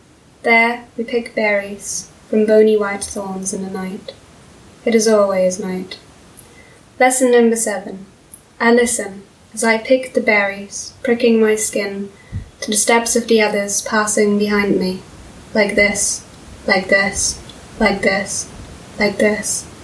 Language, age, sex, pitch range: English, 20-39, female, 200-230 Hz